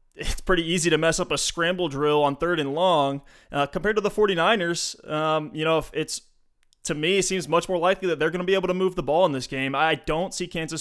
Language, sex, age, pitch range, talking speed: English, male, 20-39, 145-170 Hz, 260 wpm